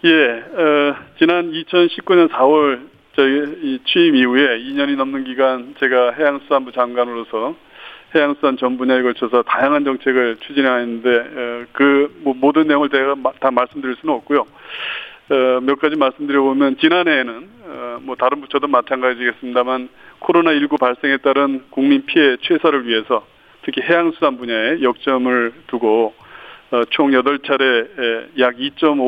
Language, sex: Korean, male